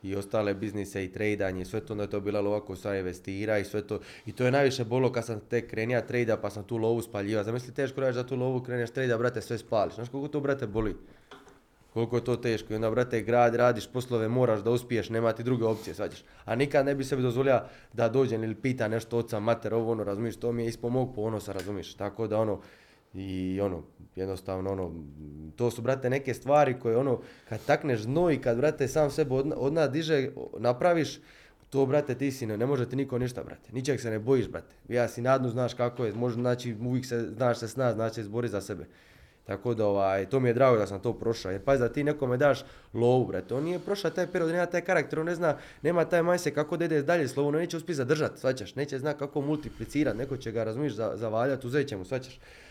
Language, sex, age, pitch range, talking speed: Croatian, male, 20-39, 110-135 Hz, 230 wpm